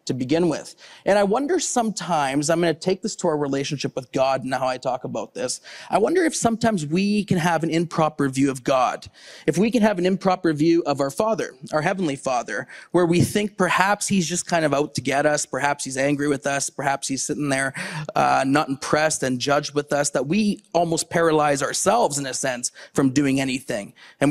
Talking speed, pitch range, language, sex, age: 215 wpm, 135-170 Hz, English, male, 30-49